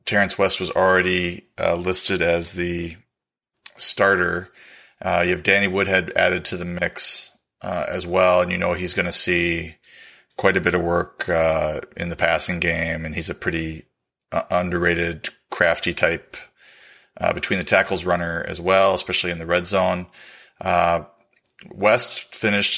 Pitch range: 85-95 Hz